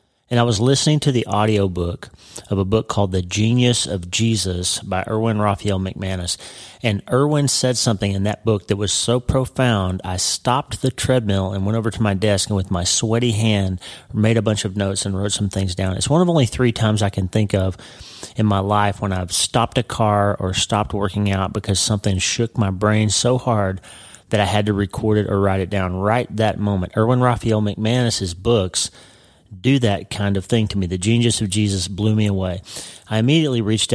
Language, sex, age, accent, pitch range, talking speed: English, male, 30-49, American, 100-115 Hz, 210 wpm